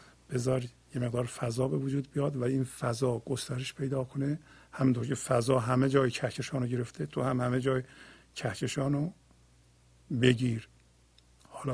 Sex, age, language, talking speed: male, 50-69, Persian, 145 wpm